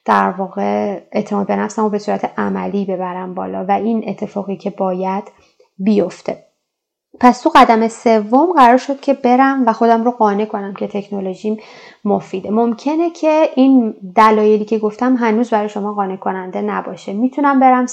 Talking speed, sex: 155 wpm, female